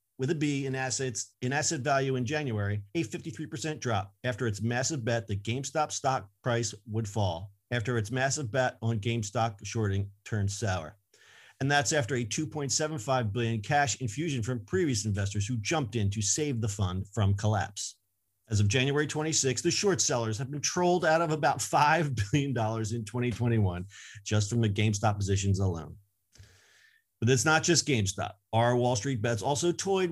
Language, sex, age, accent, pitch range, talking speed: English, male, 40-59, American, 110-150 Hz, 170 wpm